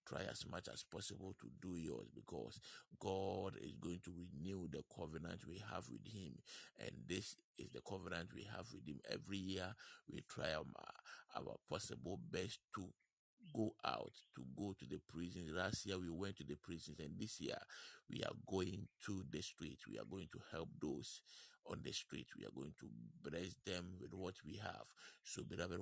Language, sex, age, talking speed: English, male, 50-69, 190 wpm